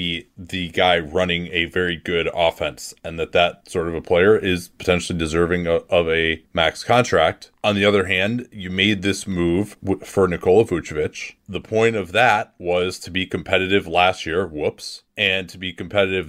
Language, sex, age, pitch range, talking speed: English, male, 30-49, 90-110 Hz, 175 wpm